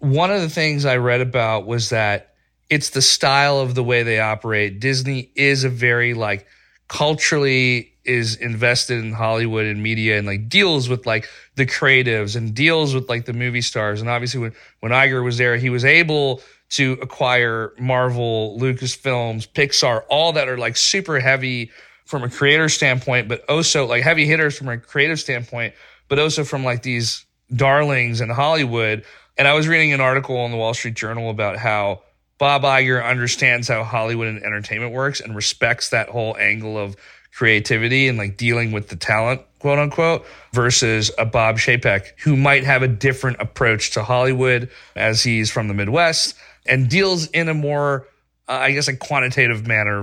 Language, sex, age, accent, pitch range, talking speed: English, male, 30-49, American, 110-140 Hz, 180 wpm